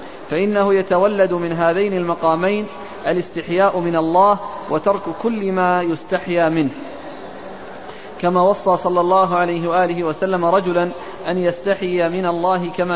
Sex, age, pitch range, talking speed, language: male, 20-39, 165-195 Hz, 120 wpm, Arabic